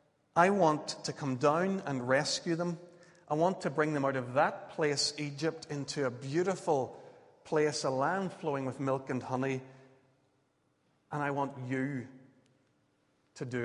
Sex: male